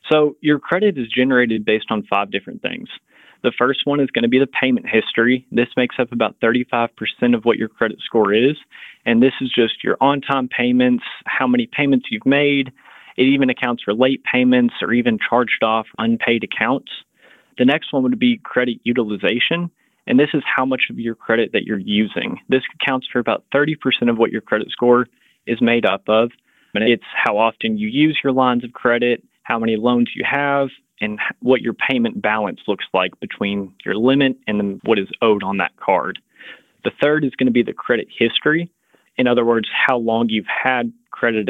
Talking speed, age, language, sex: 195 wpm, 20-39, English, male